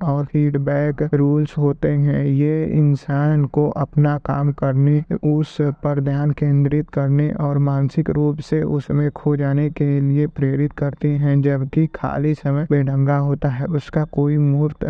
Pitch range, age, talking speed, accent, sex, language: 140-150 Hz, 20-39, 145 wpm, native, male, Hindi